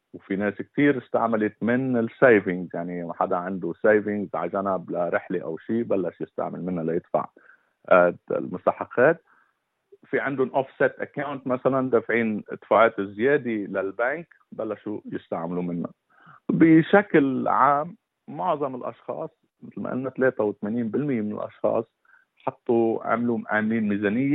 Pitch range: 100-135 Hz